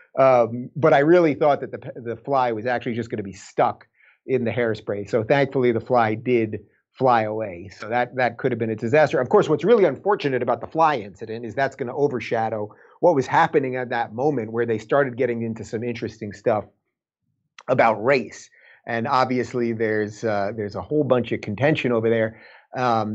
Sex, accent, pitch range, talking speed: male, American, 115-135 Hz, 200 wpm